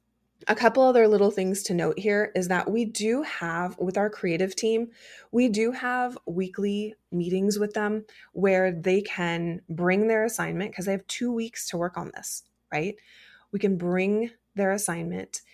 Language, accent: English, American